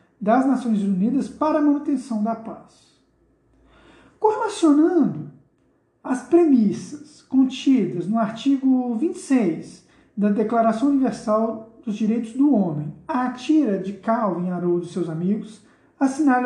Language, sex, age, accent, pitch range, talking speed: Portuguese, male, 50-69, Brazilian, 205-275 Hz, 115 wpm